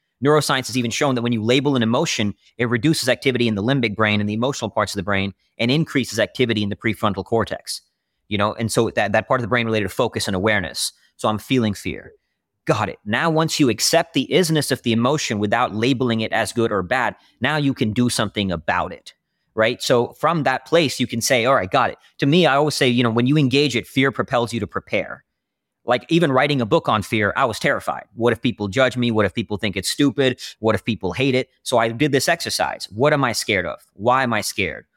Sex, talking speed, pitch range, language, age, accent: male, 245 wpm, 105-135 Hz, English, 30-49, American